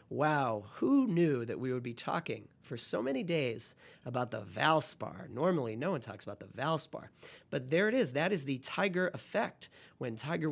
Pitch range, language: 135-170 Hz, English